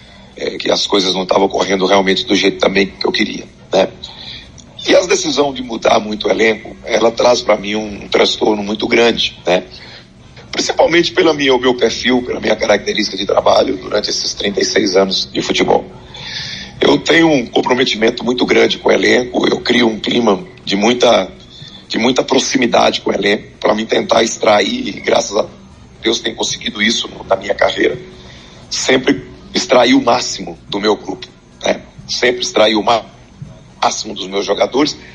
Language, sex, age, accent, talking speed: Portuguese, male, 40-59, Brazilian, 170 wpm